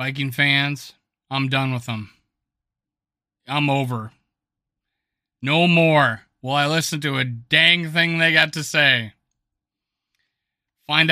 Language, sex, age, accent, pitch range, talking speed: English, male, 30-49, American, 140-180 Hz, 120 wpm